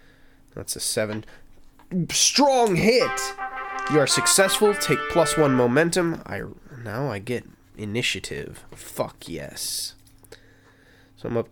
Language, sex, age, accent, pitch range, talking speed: English, male, 20-39, American, 105-155 Hz, 115 wpm